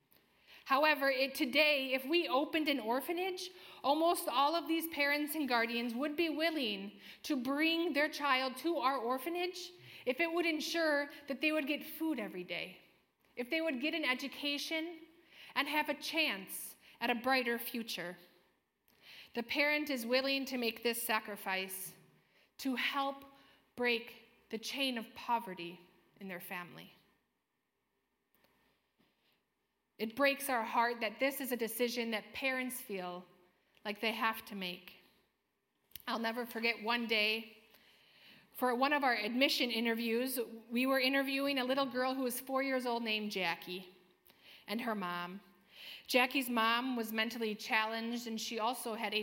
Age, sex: 30-49, female